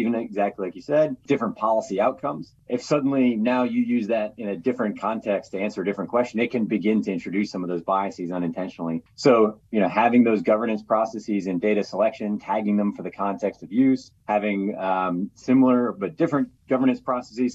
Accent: American